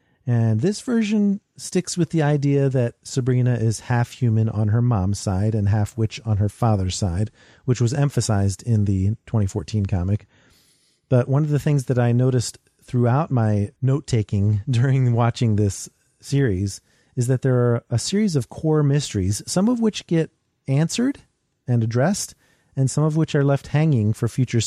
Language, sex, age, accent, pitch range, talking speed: English, male, 40-59, American, 110-135 Hz, 175 wpm